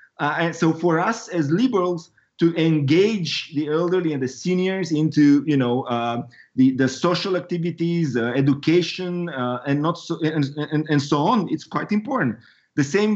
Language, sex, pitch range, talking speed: English, male, 145-180 Hz, 175 wpm